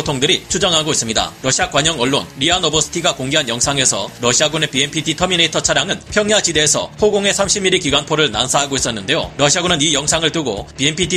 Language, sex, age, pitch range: Korean, male, 30-49, 145-180 Hz